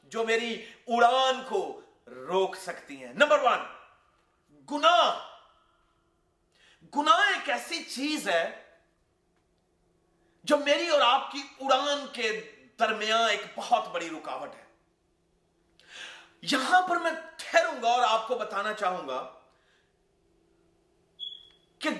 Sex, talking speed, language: male, 110 wpm, Urdu